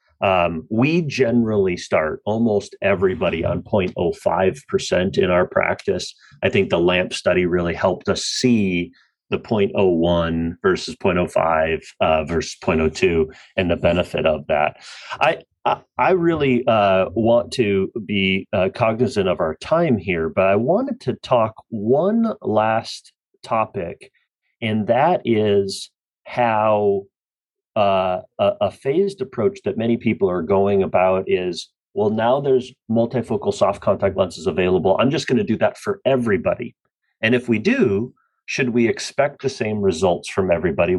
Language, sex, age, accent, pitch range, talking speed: English, male, 40-59, American, 95-140 Hz, 145 wpm